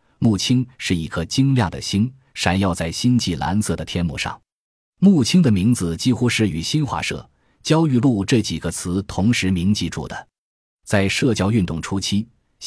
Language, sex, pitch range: Chinese, male, 85-120 Hz